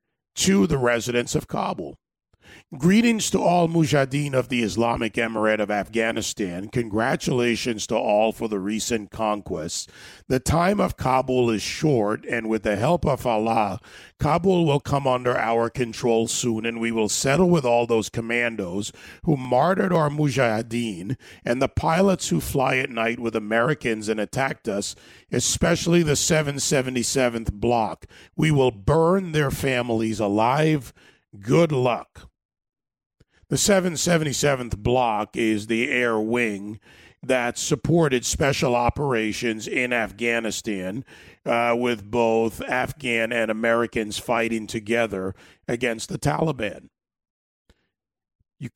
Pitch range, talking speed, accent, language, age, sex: 110-140 Hz, 125 wpm, American, English, 40-59, male